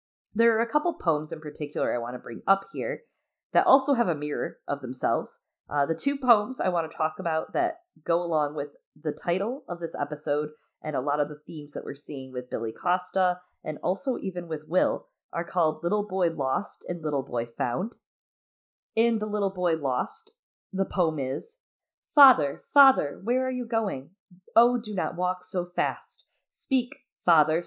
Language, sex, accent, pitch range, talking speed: English, female, American, 145-225 Hz, 190 wpm